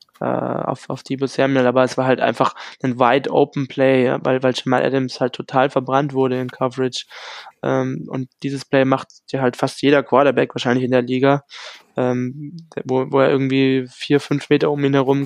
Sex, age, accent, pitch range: male, 20-39, German, 130-140 Hz